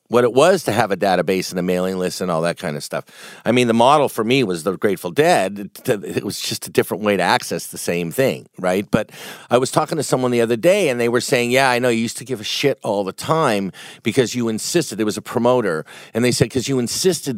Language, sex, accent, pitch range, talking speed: English, male, American, 110-145 Hz, 265 wpm